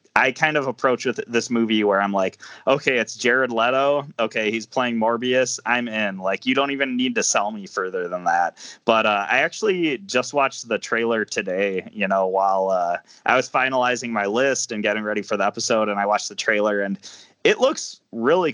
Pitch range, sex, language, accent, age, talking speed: 105-135 Hz, male, English, American, 20-39, 205 wpm